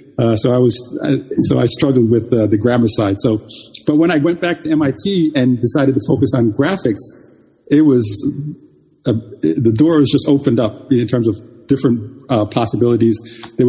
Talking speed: 185 wpm